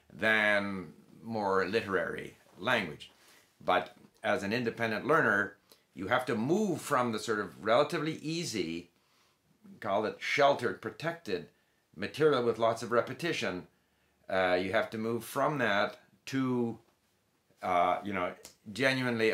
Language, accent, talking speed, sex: English, American, 125 wpm, male